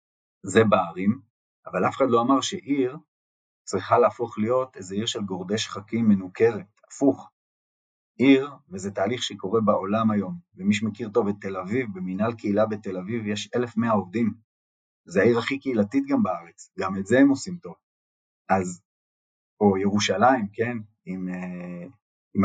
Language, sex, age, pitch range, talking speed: Hebrew, male, 30-49, 95-125 Hz, 145 wpm